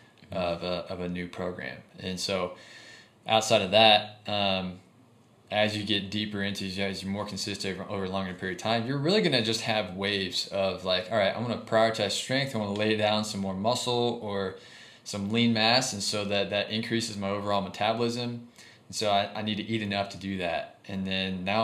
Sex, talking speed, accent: male, 215 wpm, American